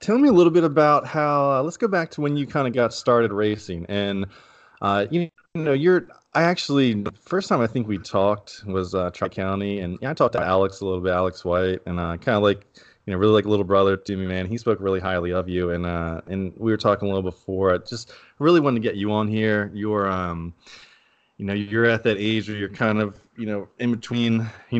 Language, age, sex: English, 20-39, male